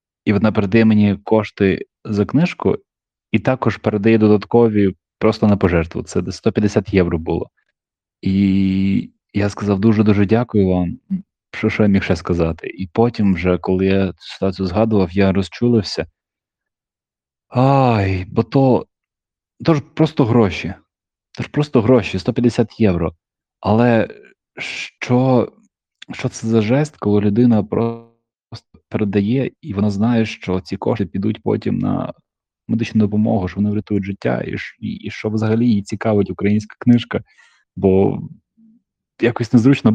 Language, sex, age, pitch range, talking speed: Ukrainian, male, 30-49, 95-120 Hz, 135 wpm